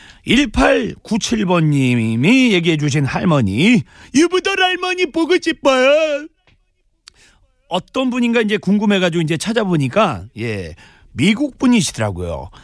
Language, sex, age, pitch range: Korean, male, 40-59, 145-230 Hz